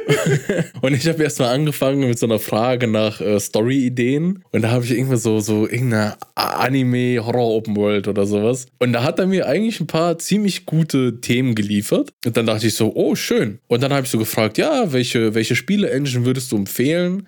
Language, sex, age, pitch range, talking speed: German, male, 20-39, 115-145 Hz, 190 wpm